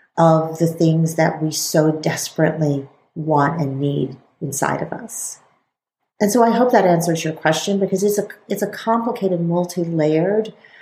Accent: American